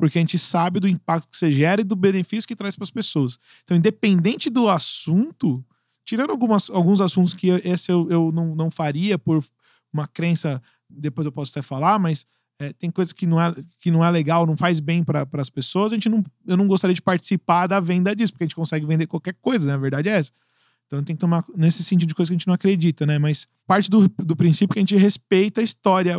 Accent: Brazilian